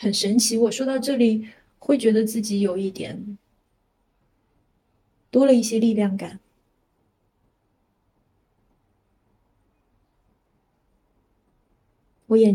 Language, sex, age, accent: Chinese, female, 20-39, native